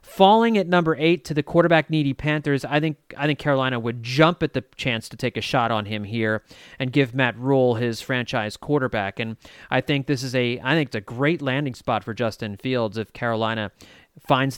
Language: English